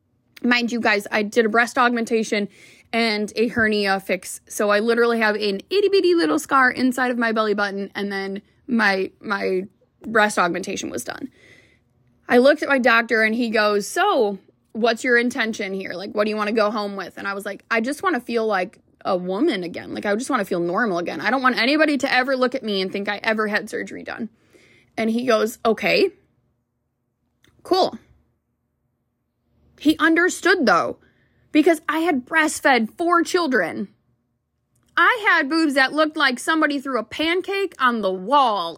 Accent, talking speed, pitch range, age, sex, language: American, 185 wpm, 210-310 Hz, 20-39, female, English